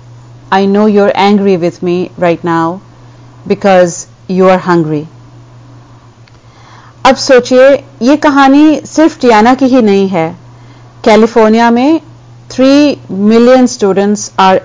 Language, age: Hindi, 40-59